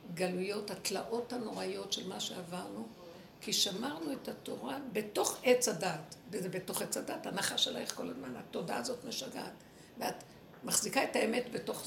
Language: Hebrew